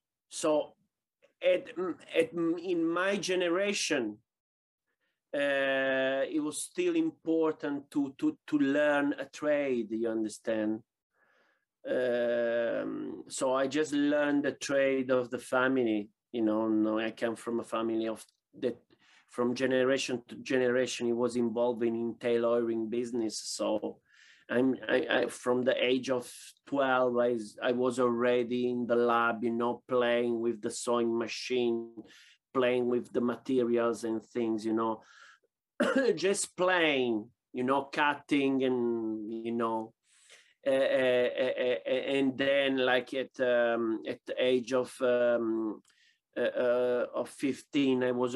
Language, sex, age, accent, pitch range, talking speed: English, male, 30-49, Italian, 115-140 Hz, 135 wpm